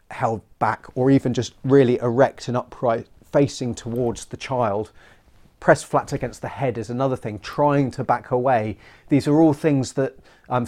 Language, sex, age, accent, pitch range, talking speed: English, male, 30-49, British, 115-140 Hz, 175 wpm